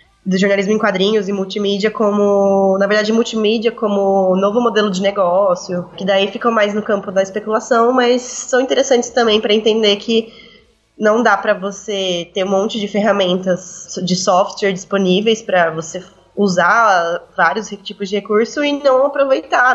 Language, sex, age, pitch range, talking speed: Portuguese, female, 20-39, 190-230 Hz, 160 wpm